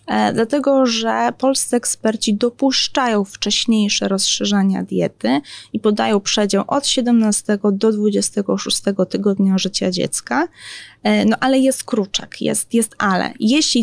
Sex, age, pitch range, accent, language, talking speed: female, 20-39, 200-245 Hz, native, Polish, 115 wpm